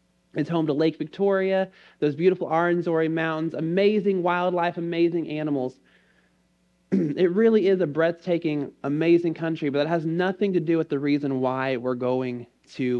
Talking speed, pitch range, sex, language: 150 wpm, 140-180 Hz, male, English